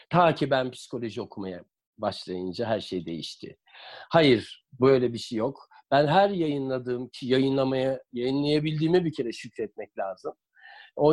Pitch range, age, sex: 130-175 Hz, 50-69, male